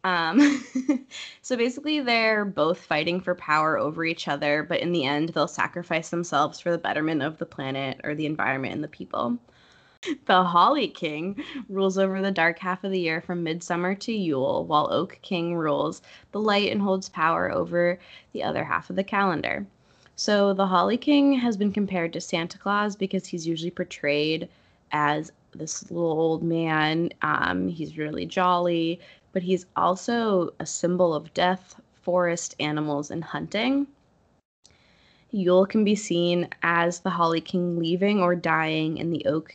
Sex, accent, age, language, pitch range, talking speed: female, American, 20-39, English, 160-195 Hz, 165 wpm